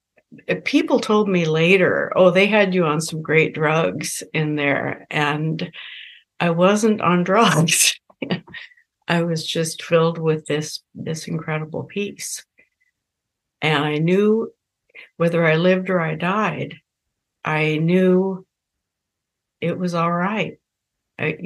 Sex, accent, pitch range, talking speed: female, American, 160-185 Hz, 125 wpm